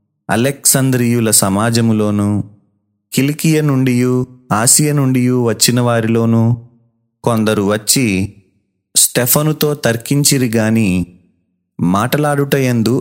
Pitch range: 110-130 Hz